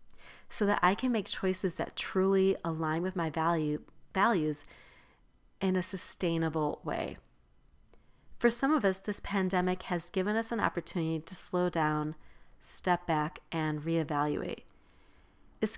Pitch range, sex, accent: 160-215 Hz, female, American